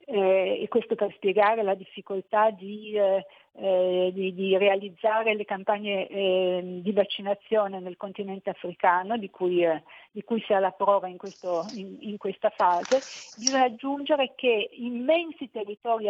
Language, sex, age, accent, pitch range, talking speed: Italian, female, 50-69, native, 195-230 Hz, 155 wpm